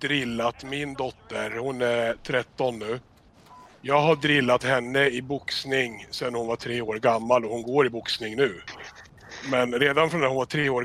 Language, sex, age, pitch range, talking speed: Swedish, male, 30-49, 115-135 Hz, 190 wpm